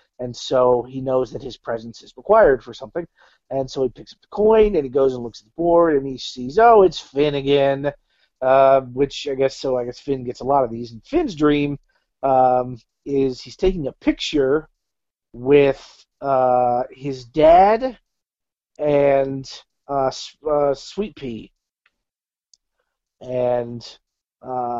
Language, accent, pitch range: English, American, 130-170 Hz